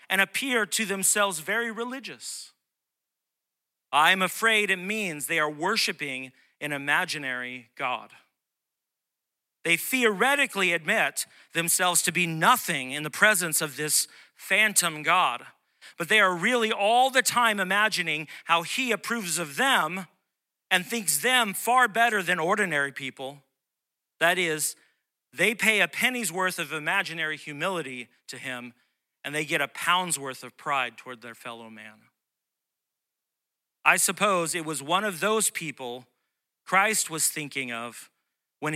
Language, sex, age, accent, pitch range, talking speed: English, male, 40-59, American, 140-195 Hz, 135 wpm